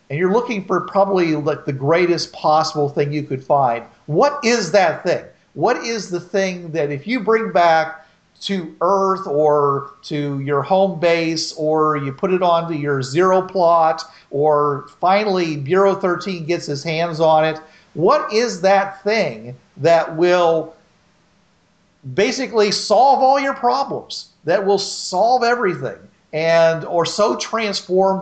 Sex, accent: male, American